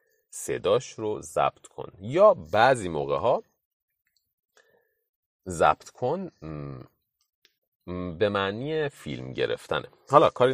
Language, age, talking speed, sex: Persian, 30-49, 95 wpm, male